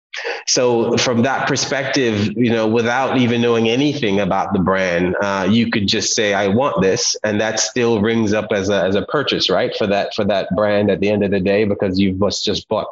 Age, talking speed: 30-49, 225 wpm